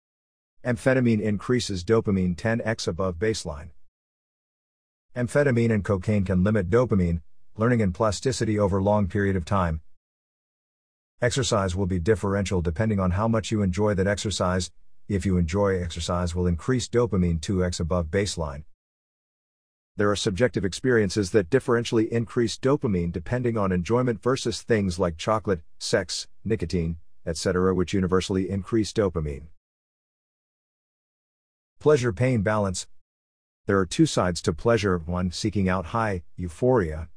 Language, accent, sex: English, American, male